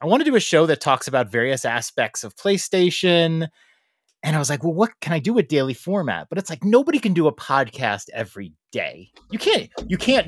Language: English